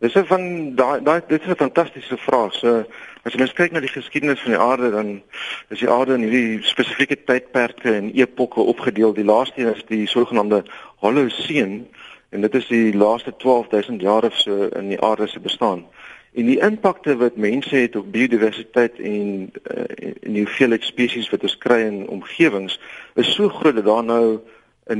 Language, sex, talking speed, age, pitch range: Dutch, male, 180 wpm, 50-69, 105-130 Hz